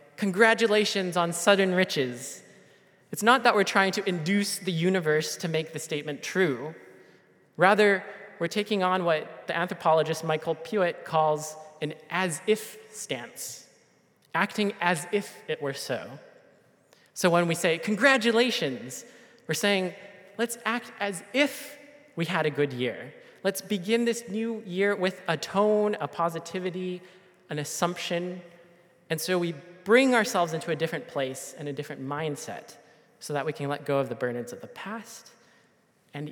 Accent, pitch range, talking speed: American, 150-200 Hz, 150 wpm